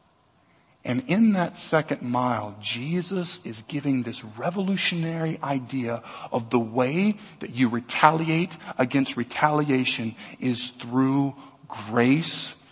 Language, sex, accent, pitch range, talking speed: English, male, American, 130-185 Hz, 105 wpm